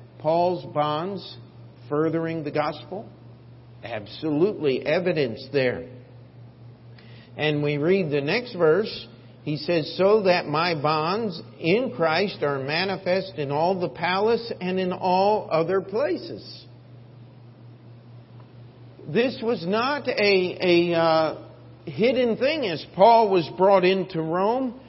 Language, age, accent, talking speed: English, 50-69, American, 115 wpm